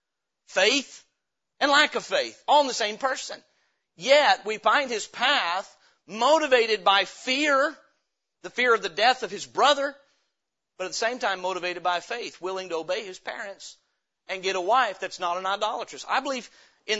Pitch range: 185-255 Hz